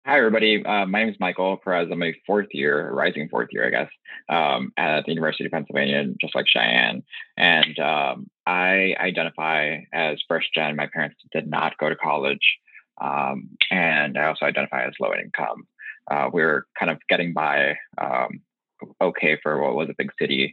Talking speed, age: 180 wpm, 20-39